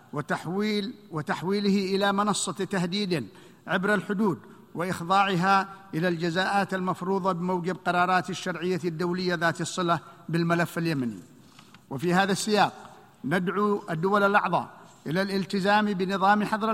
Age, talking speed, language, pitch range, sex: 50-69, 105 wpm, Arabic, 180-200 Hz, male